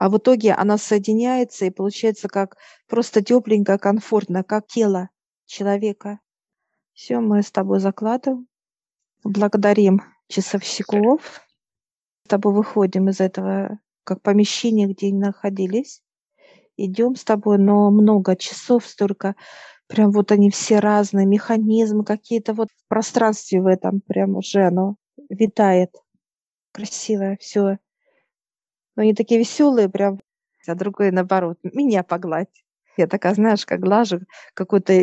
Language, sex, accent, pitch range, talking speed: Russian, female, native, 195-220 Hz, 125 wpm